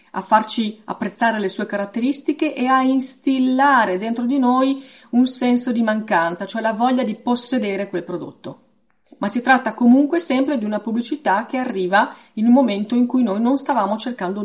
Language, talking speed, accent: Italian, 175 wpm, native